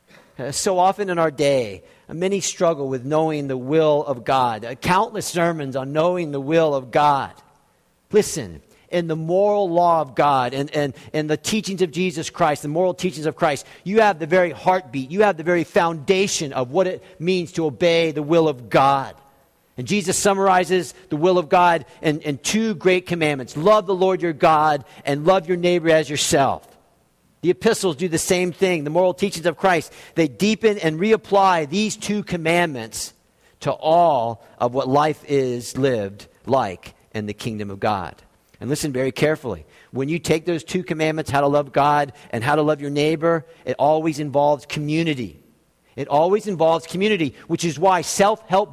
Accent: American